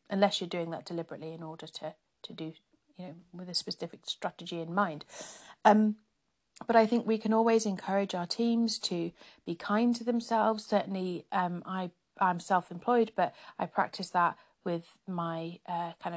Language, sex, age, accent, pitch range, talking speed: English, female, 40-59, British, 175-220 Hz, 175 wpm